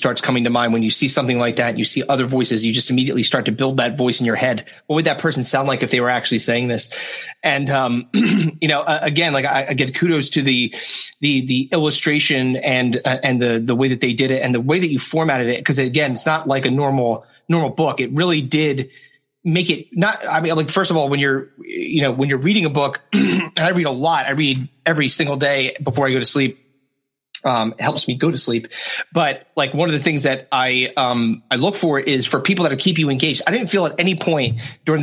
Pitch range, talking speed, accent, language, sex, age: 130-155 Hz, 255 wpm, American, English, male, 30-49